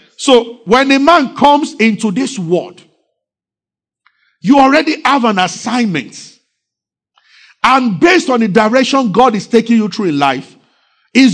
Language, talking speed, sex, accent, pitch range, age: English, 140 wpm, male, Nigerian, 200-270 Hz, 50-69